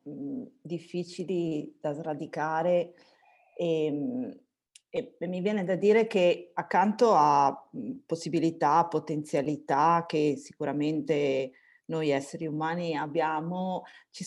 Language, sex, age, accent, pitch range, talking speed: Italian, female, 40-59, native, 160-200 Hz, 90 wpm